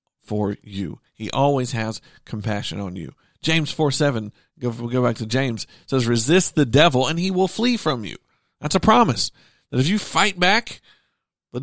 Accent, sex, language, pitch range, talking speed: American, male, English, 110-160 Hz, 180 wpm